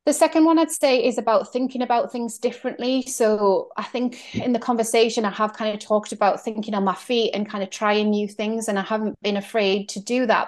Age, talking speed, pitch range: 30-49, 235 wpm, 200-260 Hz